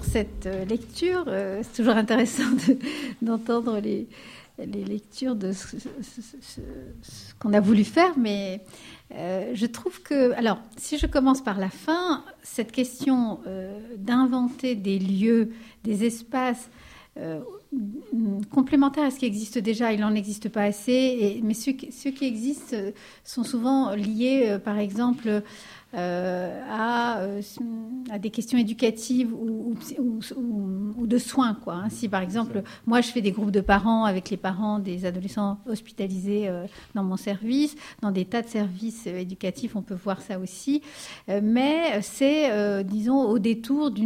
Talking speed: 145 wpm